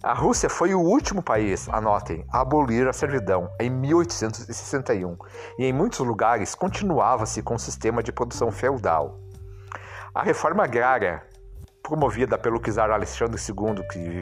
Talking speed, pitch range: 150 wpm, 95-120 Hz